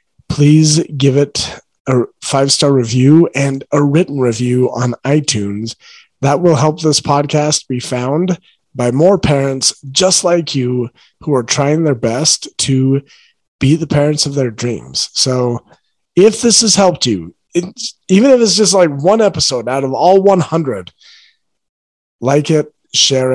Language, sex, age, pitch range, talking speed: English, male, 30-49, 130-165 Hz, 145 wpm